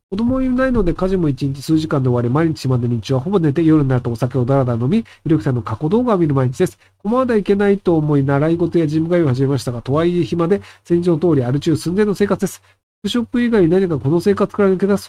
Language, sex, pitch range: Japanese, male, 130-215 Hz